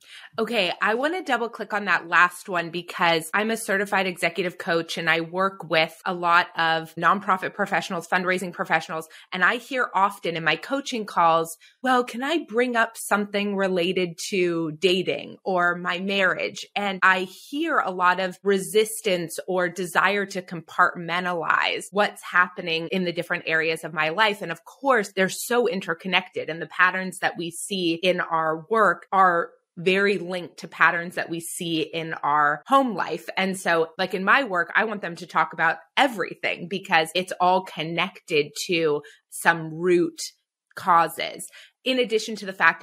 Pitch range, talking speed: 165-200 Hz, 170 wpm